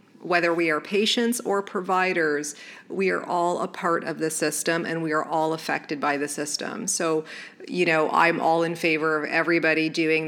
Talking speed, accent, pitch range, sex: 185 wpm, American, 160-185 Hz, female